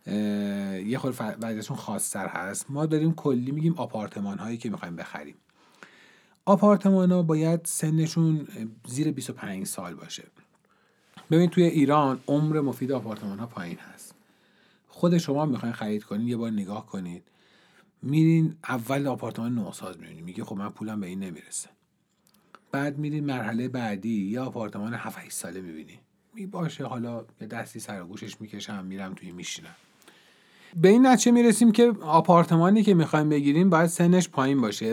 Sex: male